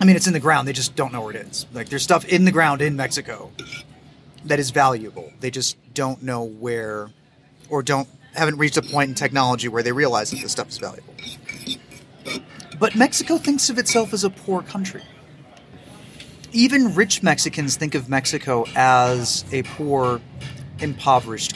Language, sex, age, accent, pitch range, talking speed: English, male, 30-49, American, 135-170 Hz, 180 wpm